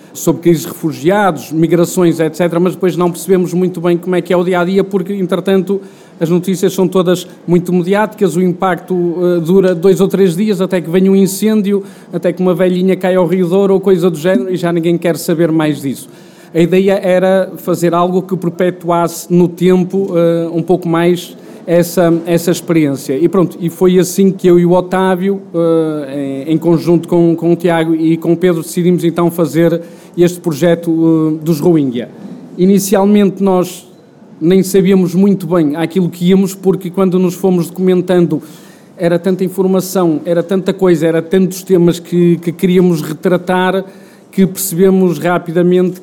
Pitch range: 170-185 Hz